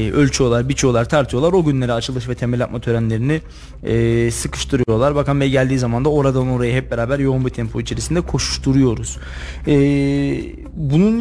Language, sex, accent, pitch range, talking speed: Turkish, male, native, 120-145 Hz, 150 wpm